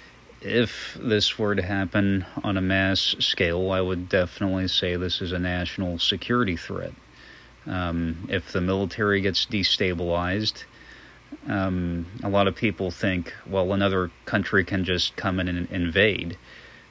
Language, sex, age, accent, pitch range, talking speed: English, male, 30-49, American, 90-100 Hz, 140 wpm